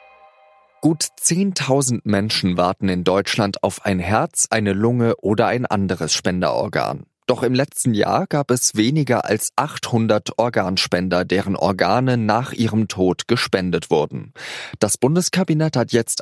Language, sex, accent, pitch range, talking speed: German, male, German, 95-130 Hz, 135 wpm